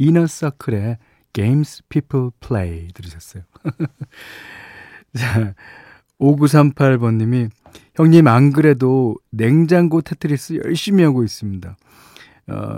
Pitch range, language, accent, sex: 110-150 Hz, Korean, native, male